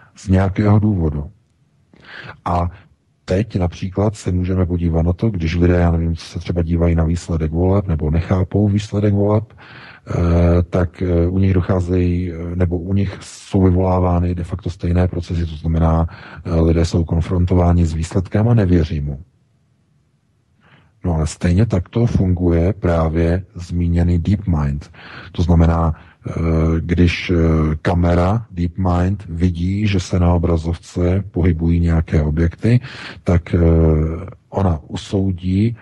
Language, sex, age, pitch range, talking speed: Czech, male, 40-59, 85-95 Hz, 125 wpm